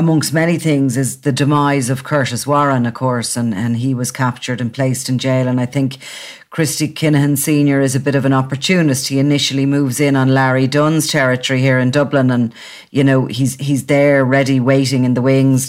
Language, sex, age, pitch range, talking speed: English, female, 40-59, 130-145 Hz, 205 wpm